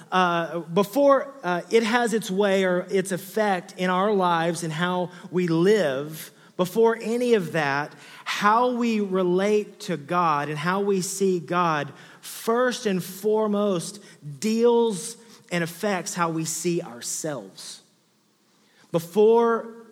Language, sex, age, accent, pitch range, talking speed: English, male, 30-49, American, 160-205 Hz, 125 wpm